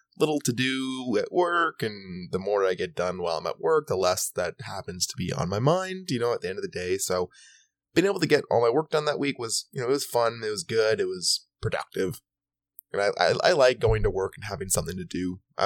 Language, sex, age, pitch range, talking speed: English, male, 20-39, 95-155 Hz, 265 wpm